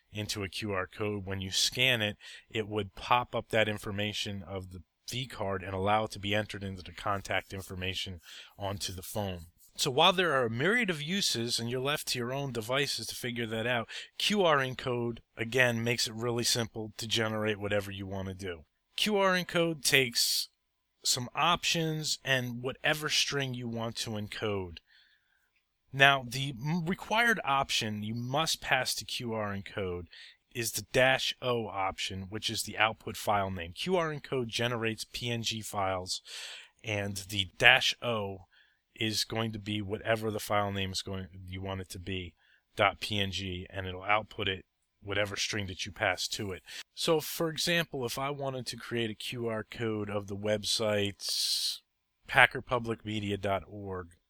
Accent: American